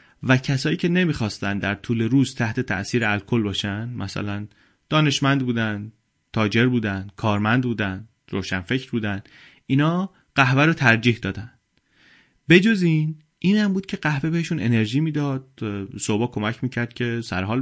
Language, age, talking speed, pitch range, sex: Persian, 30-49, 140 wpm, 110-135 Hz, male